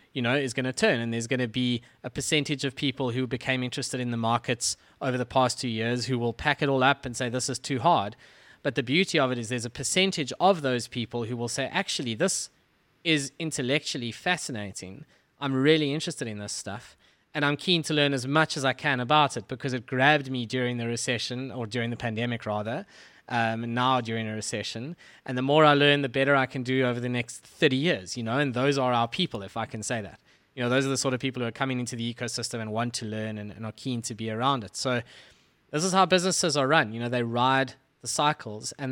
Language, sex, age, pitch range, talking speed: English, male, 20-39, 120-145 Hz, 250 wpm